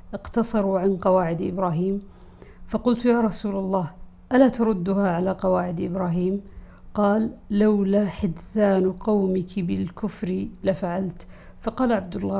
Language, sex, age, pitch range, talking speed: Arabic, female, 50-69, 185-215 Hz, 110 wpm